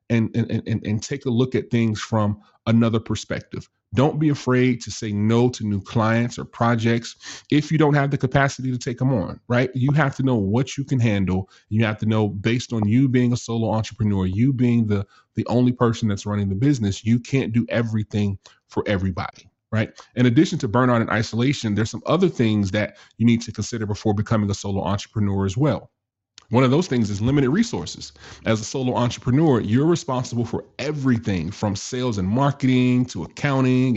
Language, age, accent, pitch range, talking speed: English, 30-49, American, 105-125 Hz, 200 wpm